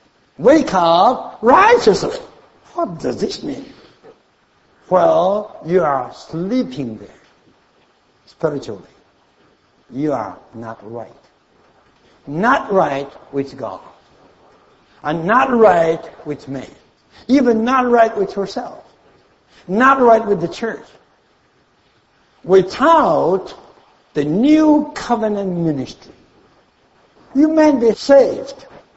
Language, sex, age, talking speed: English, male, 60-79, 95 wpm